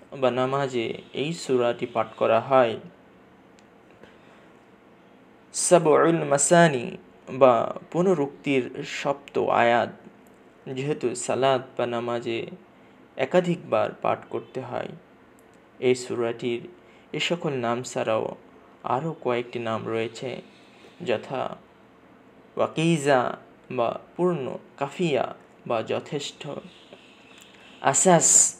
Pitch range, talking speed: 120-140 Hz, 80 wpm